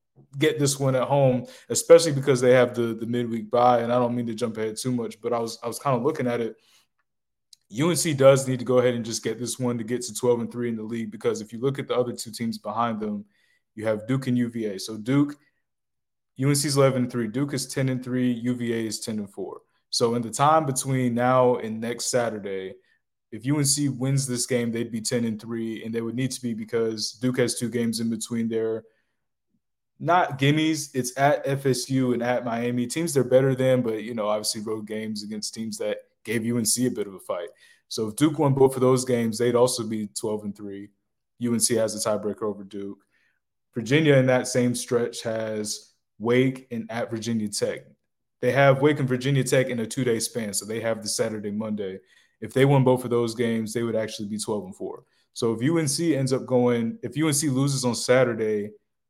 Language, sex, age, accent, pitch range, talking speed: English, male, 20-39, American, 110-130 Hz, 220 wpm